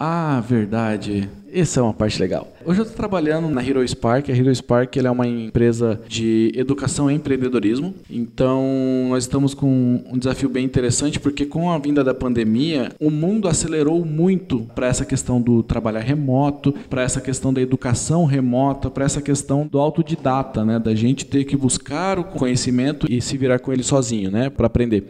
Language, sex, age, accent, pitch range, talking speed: Portuguese, male, 20-39, Brazilian, 120-145 Hz, 180 wpm